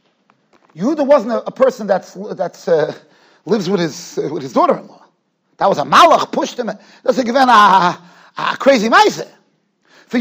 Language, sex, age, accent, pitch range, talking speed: English, male, 40-59, American, 215-325 Hz, 180 wpm